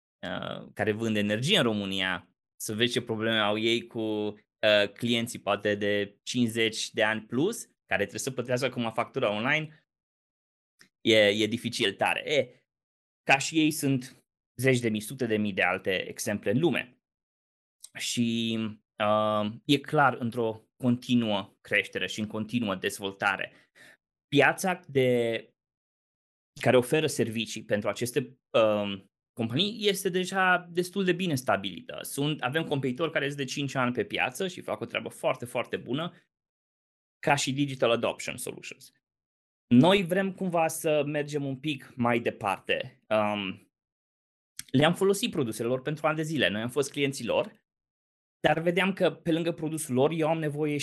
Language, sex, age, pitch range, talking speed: Romanian, male, 20-39, 110-145 Hz, 150 wpm